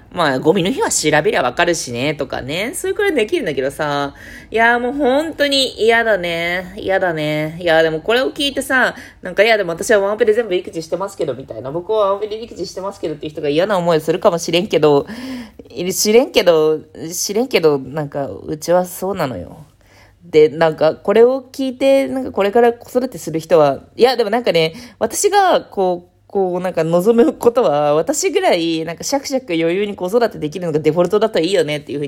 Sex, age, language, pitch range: female, 20-39, Japanese, 155-235 Hz